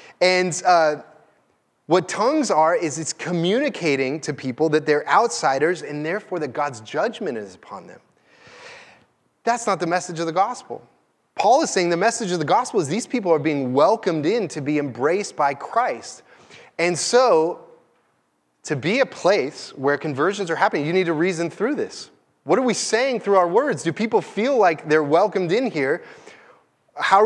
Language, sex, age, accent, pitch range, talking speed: English, male, 30-49, American, 150-205 Hz, 175 wpm